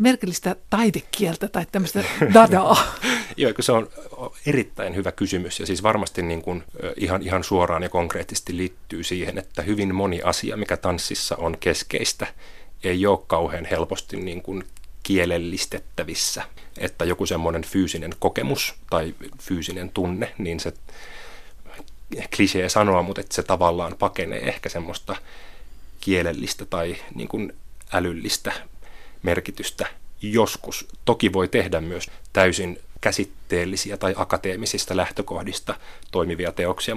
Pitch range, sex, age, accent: 90-105 Hz, male, 30-49, native